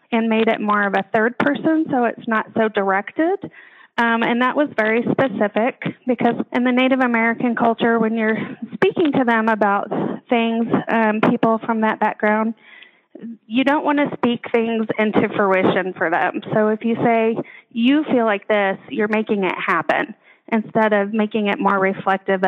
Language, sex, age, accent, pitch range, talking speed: English, female, 30-49, American, 205-245 Hz, 175 wpm